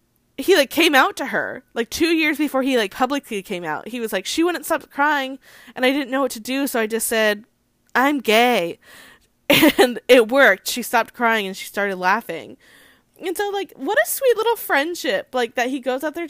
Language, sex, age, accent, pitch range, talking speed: English, female, 10-29, American, 225-300 Hz, 215 wpm